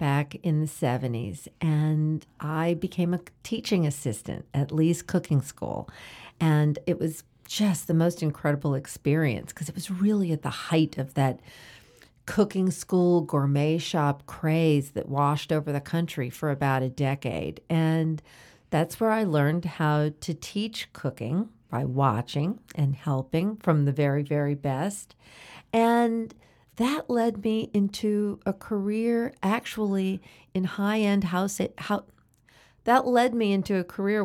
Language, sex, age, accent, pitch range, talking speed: English, female, 50-69, American, 145-205 Hz, 140 wpm